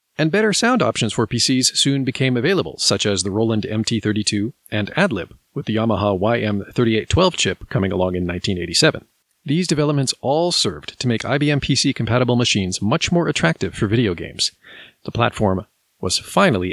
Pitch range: 105-140 Hz